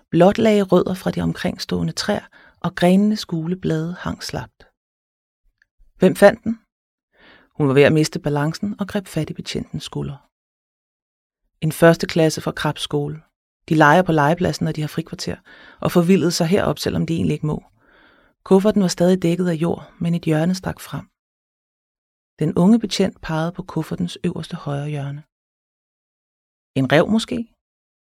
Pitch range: 160-195 Hz